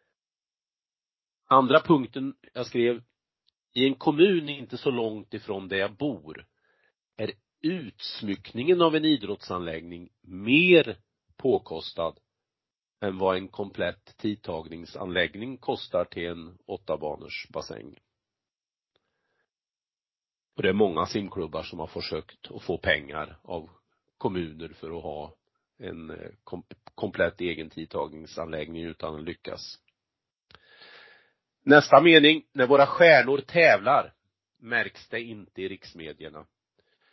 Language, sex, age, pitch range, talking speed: Swedish, male, 40-59, 90-130 Hz, 105 wpm